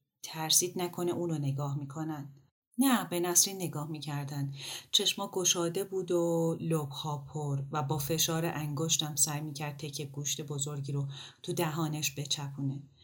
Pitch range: 140-170 Hz